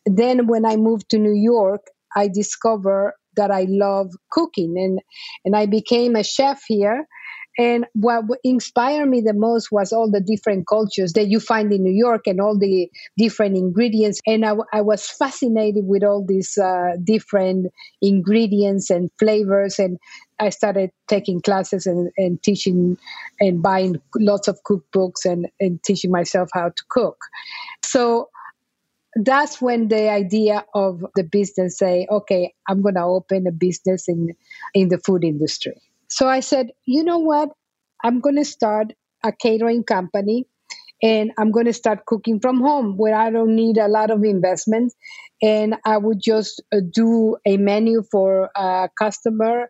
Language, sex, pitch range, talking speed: English, female, 195-230 Hz, 165 wpm